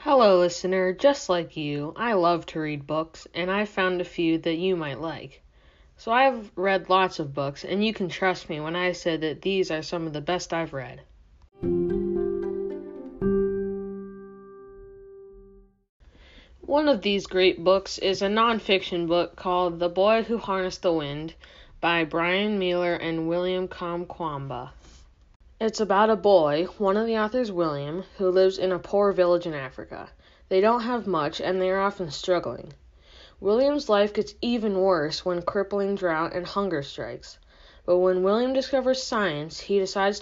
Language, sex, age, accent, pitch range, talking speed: English, female, 20-39, American, 165-200 Hz, 160 wpm